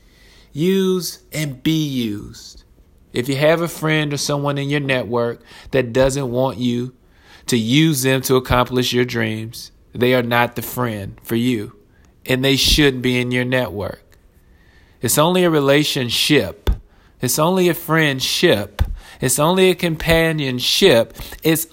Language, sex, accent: English, male, American